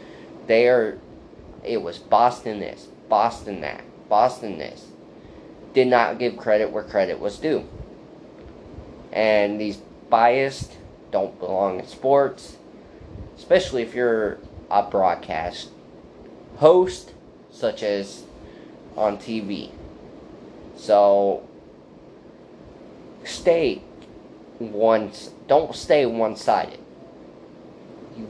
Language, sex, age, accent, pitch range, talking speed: English, male, 20-39, American, 100-120 Hz, 90 wpm